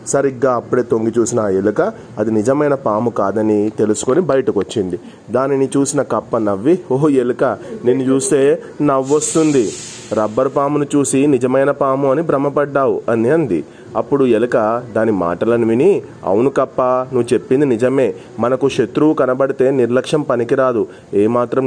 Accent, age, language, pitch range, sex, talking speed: native, 30-49, Telugu, 115-140 Hz, male, 125 wpm